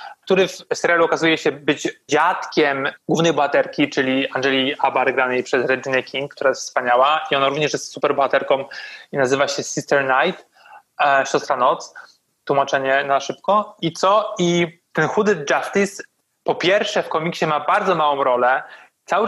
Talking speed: 155 wpm